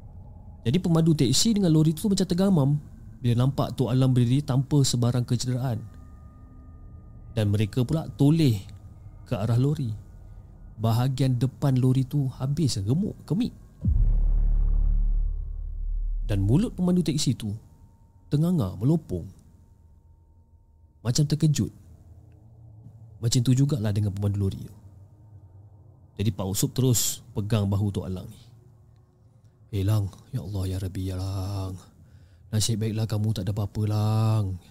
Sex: male